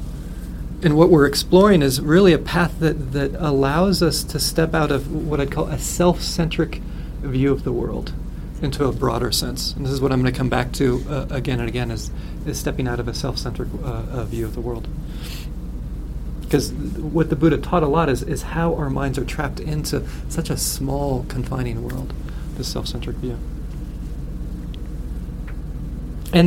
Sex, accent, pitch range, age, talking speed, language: male, American, 125-160 Hz, 40-59, 185 wpm, English